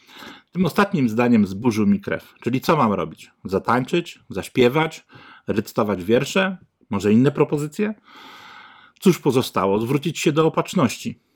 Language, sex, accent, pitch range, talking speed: Polish, male, native, 115-170 Hz, 120 wpm